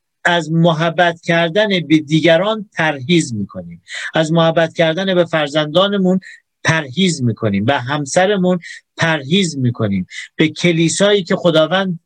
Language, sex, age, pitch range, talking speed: Persian, male, 50-69, 160-240 Hz, 110 wpm